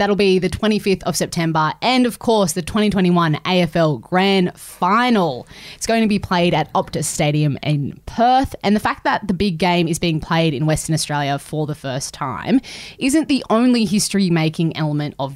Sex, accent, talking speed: female, Australian, 185 wpm